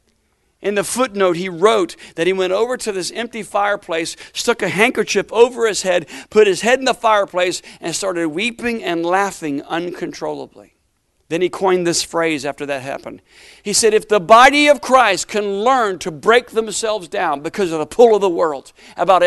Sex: male